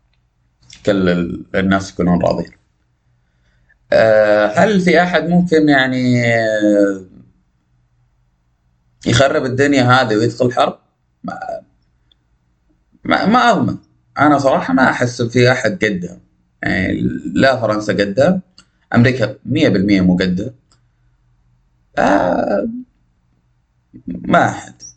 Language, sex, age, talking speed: Arabic, male, 30-49, 85 wpm